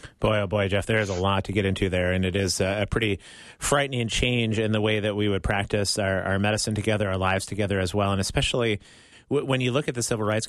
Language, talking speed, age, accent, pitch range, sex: English, 260 wpm, 30-49, American, 100-115 Hz, male